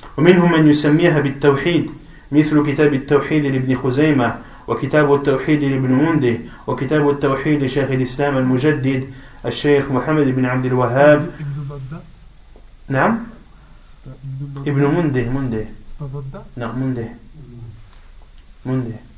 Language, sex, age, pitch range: French, male, 30-49, 130-150 Hz